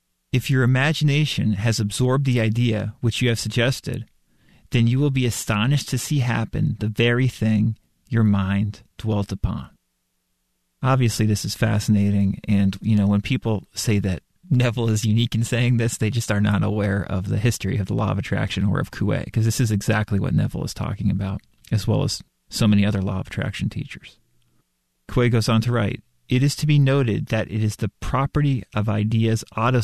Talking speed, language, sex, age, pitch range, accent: 195 wpm, English, male, 30-49, 100-120 Hz, American